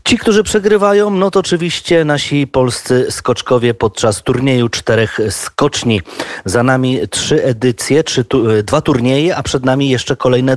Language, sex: Polish, male